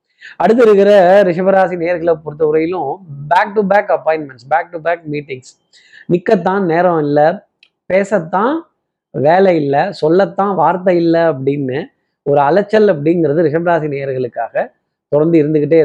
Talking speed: 45 wpm